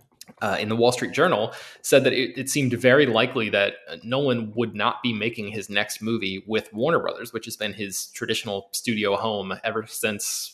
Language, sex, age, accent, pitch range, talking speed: English, male, 20-39, American, 100-125 Hz, 195 wpm